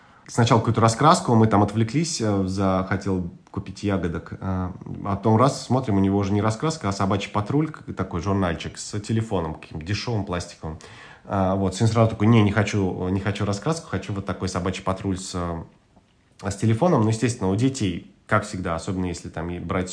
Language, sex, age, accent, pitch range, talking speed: Russian, male, 20-39, native, 90-115 Hz, 170 wpm